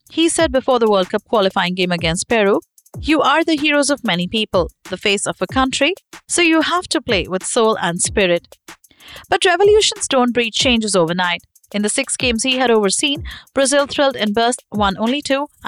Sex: female